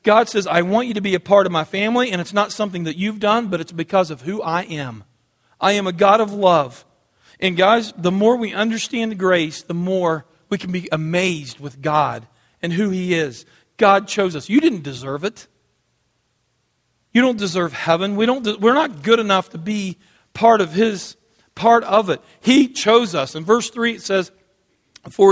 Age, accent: 40-59, American